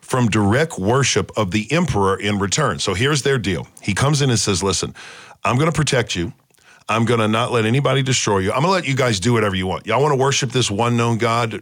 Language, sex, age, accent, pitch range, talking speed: English, male, 40-59, American, 100-125 Hz, 230 wpm